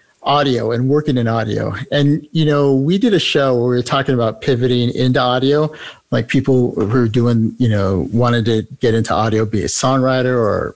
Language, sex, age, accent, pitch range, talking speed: English, male, 50-69, American, 115-145 Hz, 200 wpm